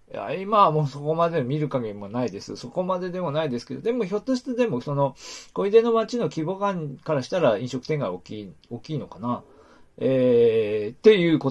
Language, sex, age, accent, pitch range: Japanese, male, 40-59, native, 120-165 Hz